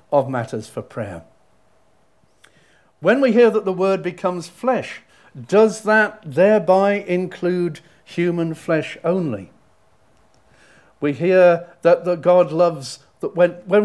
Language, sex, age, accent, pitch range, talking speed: English, male, 50-69, British, 140-190 Hz, 110 wpm